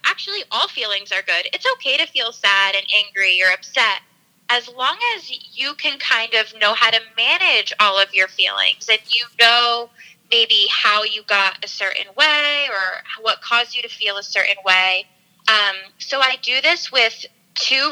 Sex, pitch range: female, 200-255 Hz